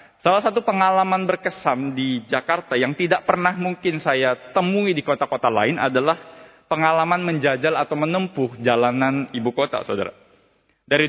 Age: 20-39